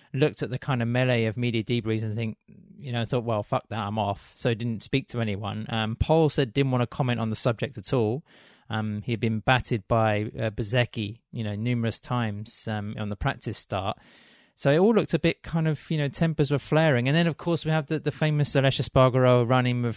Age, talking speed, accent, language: 30-49, 240 wpm, British, English